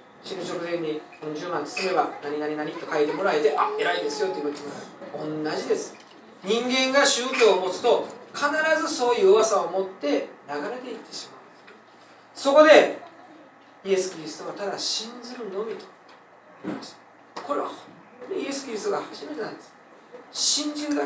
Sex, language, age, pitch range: male, Japanese, 40-59, 195-305 Hz